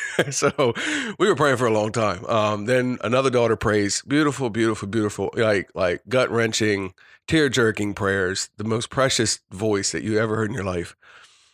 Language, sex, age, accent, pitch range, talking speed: English, male, 40-59, American, 100-120 Hz, 165 wpm